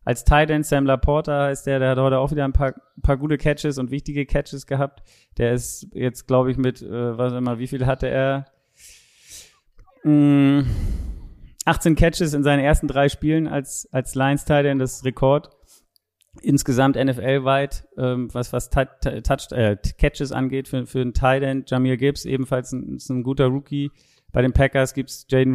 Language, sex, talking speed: German, male, 185 wpm